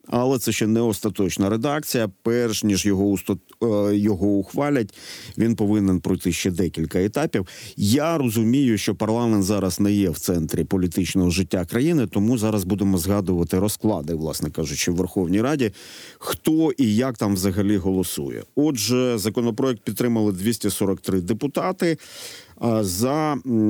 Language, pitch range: Ukrainian, 95-120 Hz